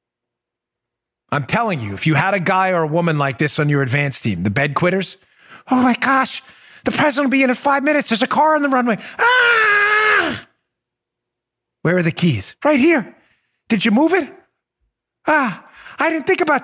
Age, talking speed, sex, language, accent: 40-59, 190 wpm, male, English, American